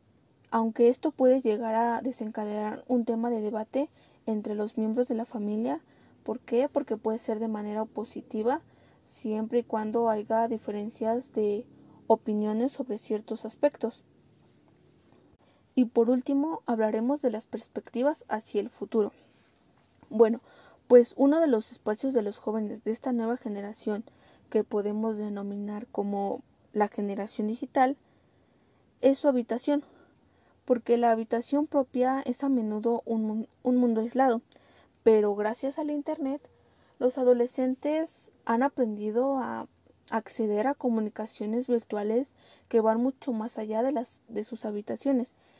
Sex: female